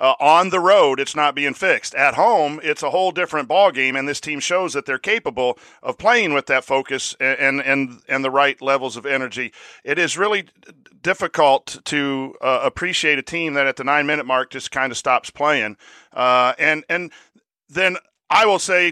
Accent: American